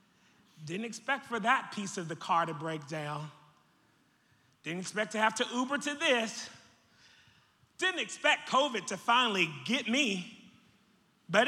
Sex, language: male, English